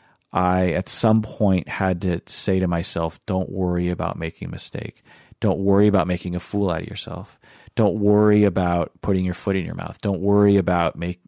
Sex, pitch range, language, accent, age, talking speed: male, 90-105 Hz, English, American, 40-59, 195 wpm